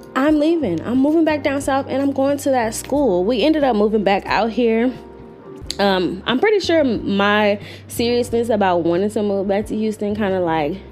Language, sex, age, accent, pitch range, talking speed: English, female, 20-39, American, 195-260 Hz, 200 wpm